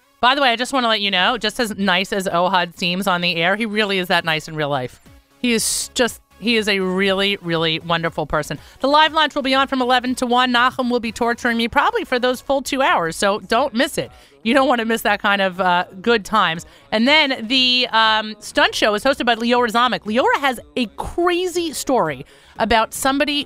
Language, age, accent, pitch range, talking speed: English, 30-49, American, 195-260 Hz, 235 wpm